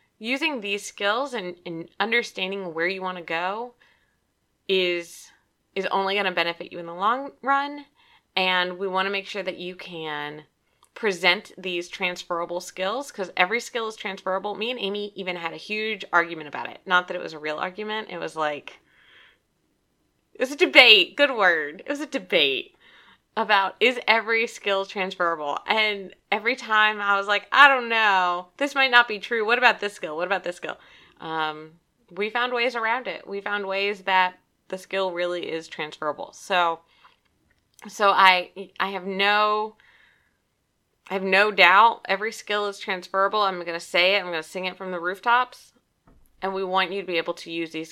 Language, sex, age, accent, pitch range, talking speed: English, female, 20-39, American, 175-215 Hz, 185 wpm